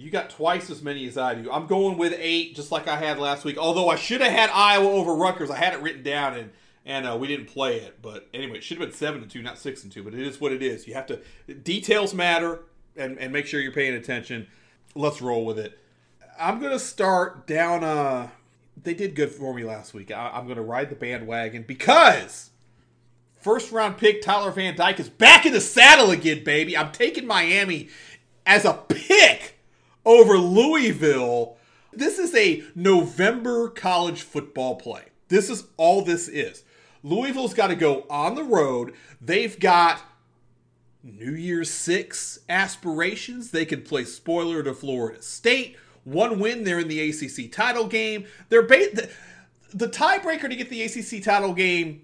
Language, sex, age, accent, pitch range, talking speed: English, male, 30-49, American, 135-205 Hz, 190 wpm